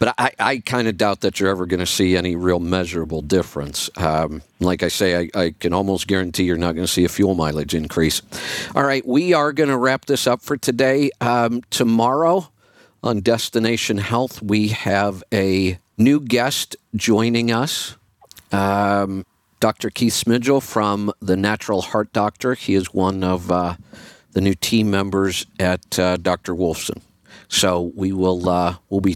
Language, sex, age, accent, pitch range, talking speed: English, male, 50-69, American, 90-115 Hz, 165 wpm